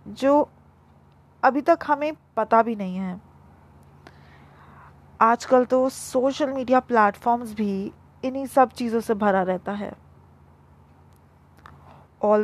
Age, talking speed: 20-39, 105 wpm